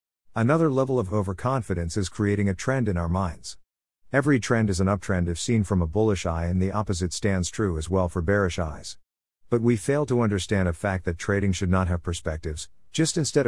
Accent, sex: American, male